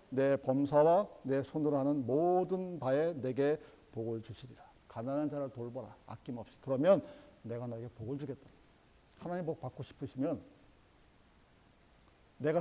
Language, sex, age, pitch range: Korean, male, 50-69, 135-215 Hz